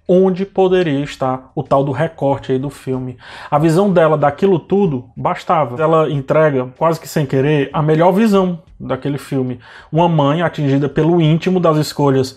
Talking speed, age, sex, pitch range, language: 165 wpm, 20-39, male, 135-160 Hz, Portuguese